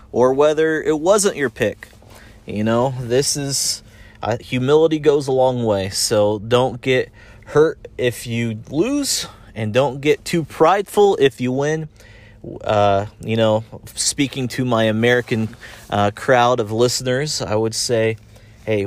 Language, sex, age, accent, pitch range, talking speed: English, male, 30-49, American, 105-130 Hz, 145 wpm